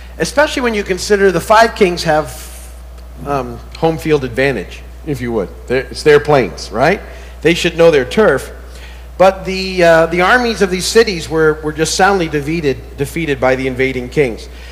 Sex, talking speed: male, 170 wpm